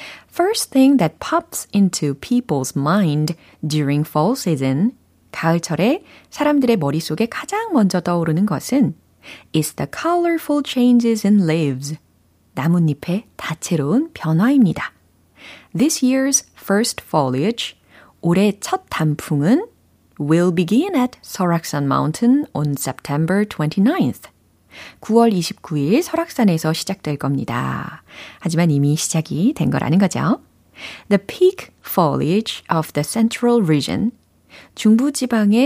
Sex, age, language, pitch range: female, 30-49, Korean, 155-245 Hz